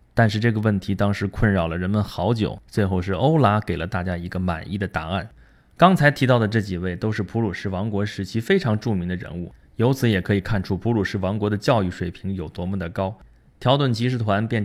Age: 20-39